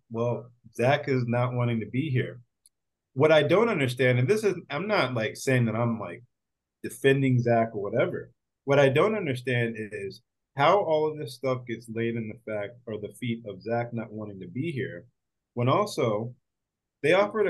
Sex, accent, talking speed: male, American, 190 wpm